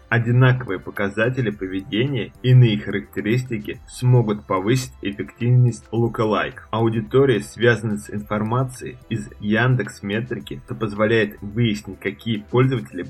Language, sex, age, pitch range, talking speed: Russian, male, 20-39, 105-120 Hz, 95 wpm